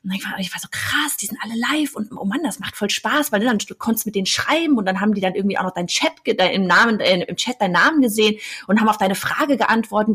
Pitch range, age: 195-255 Hz, 30-49